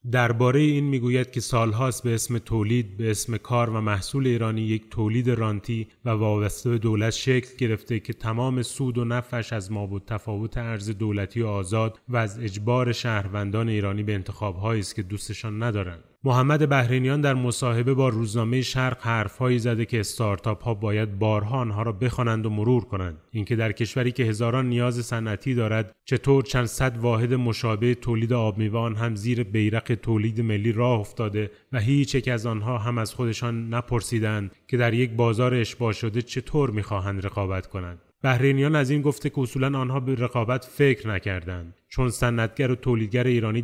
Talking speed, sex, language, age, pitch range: 170 wpm, male, Persian, 30-49, 110-125 Hz